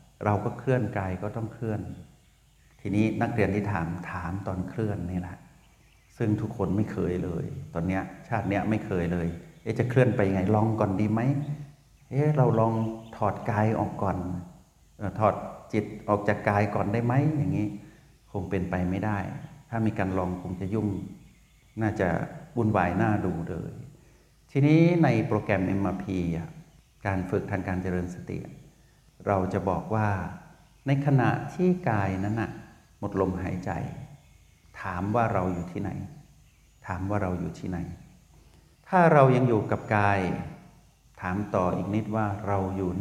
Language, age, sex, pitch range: Thai, 60-79, male, 95-120 Hz